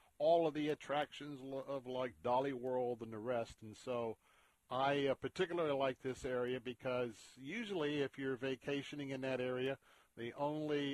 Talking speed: 155 wpm